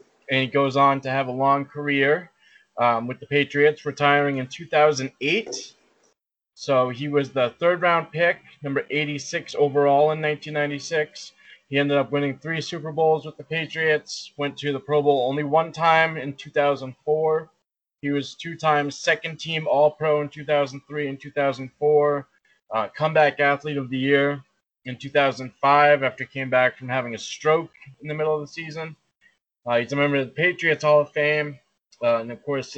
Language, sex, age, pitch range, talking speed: English, male, 20-39, 140-155 Hz, 170 wpm